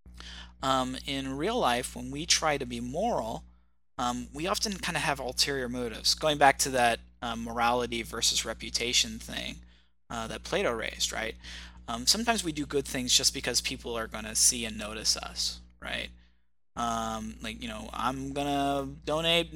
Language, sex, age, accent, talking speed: English, male, 20-39, American, 175 wpm